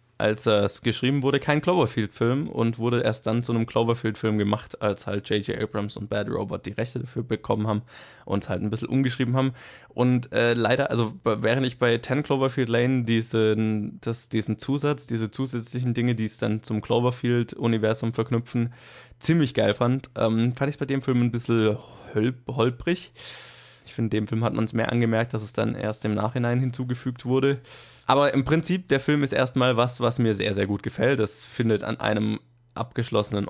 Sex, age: male, 20-39